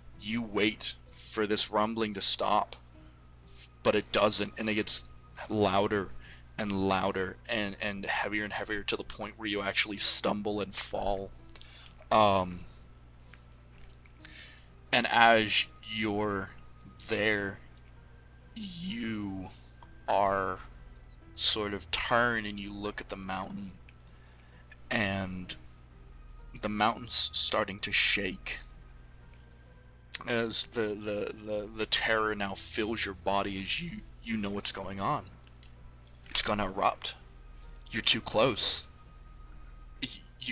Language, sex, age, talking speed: English, male, 20-39, 115 wpm